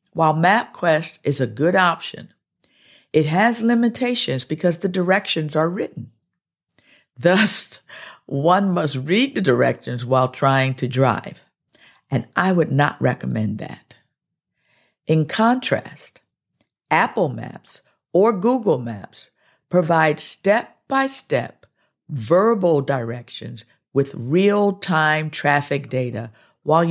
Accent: American